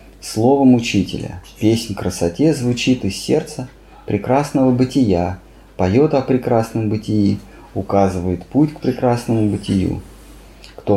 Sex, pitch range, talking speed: male, 95-130 Hz, 105 wpm